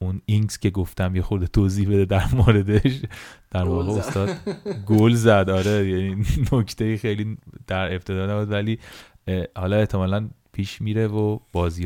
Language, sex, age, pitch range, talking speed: Persian, male, 30-49, 90-115 Hz, 140 wpm